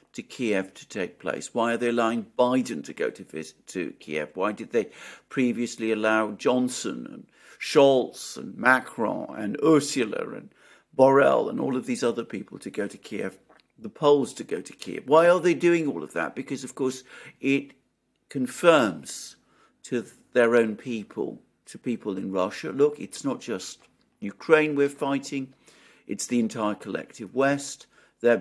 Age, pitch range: 50-69, 110-140 Hz